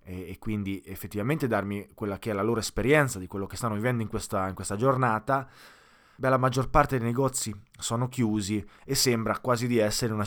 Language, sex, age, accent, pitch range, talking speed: Italian, male, 20-39, native, 105-140 Hz, 200 wpm